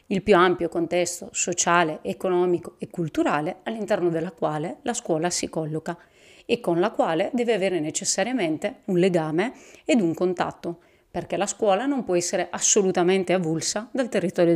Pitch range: 170-205 Hz